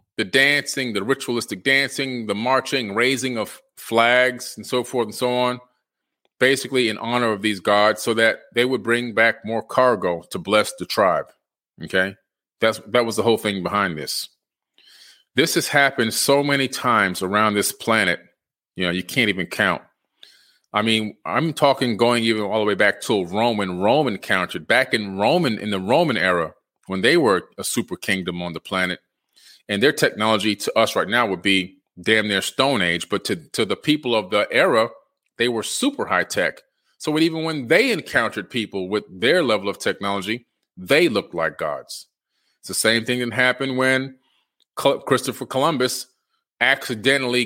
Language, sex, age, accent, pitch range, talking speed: English, male, 30-49, American, 105-125 Hz, 180 wpm